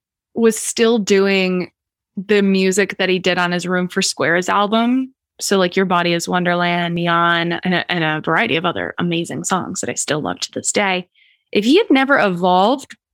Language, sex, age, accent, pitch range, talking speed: English, female, 20-39, American, 180-235 Hz, 190 wpm